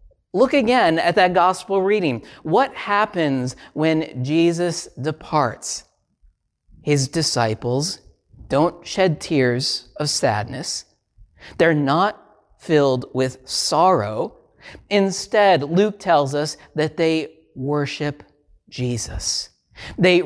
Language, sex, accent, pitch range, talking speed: English, male, American, 140-190 Hz, 95 wpm